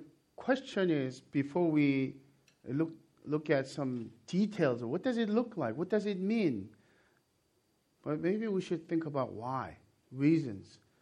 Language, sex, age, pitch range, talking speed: English, male, 50-69, 135-175 Hz, 145 wpm